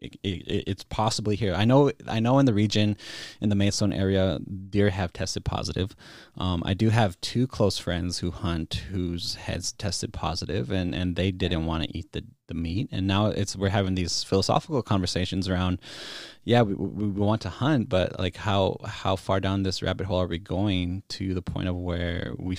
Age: 20-39